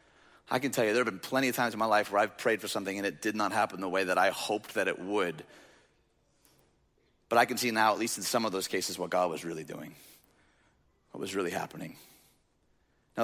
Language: English